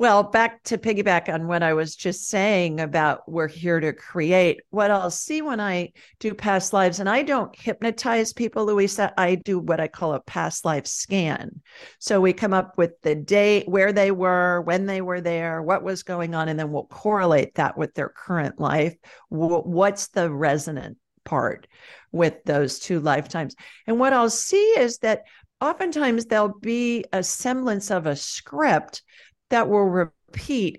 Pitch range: 165-215 Hz